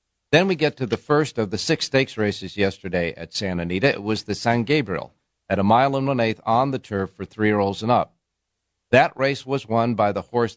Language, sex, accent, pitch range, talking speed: English, male, American, 95-120 Hz, 240 wpm